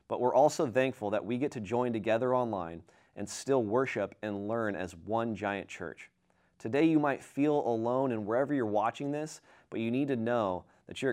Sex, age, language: male, 30-49, English